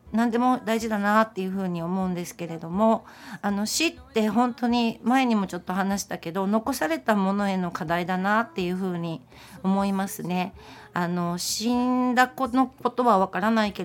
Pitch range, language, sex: 185-230 Hz, Japanese, female